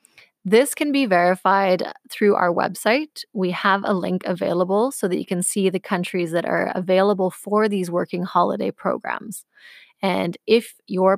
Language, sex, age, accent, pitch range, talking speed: English, female, 20-39, American, 185-225 Hz, 160 wpm